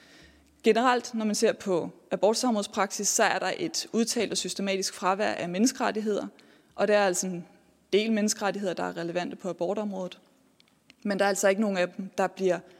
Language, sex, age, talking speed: Danish, female, 20-39, 180 wpm